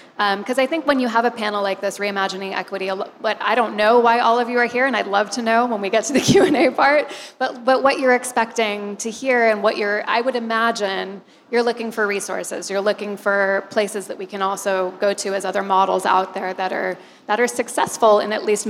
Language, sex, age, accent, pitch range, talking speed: English, female, 20-39, American, 195-230 Hz, 240 wpm